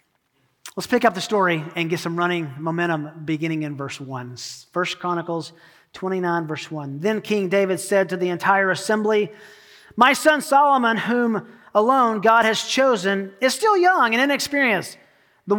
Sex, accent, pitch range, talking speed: male, American, 190-250 Hz, 160 wpm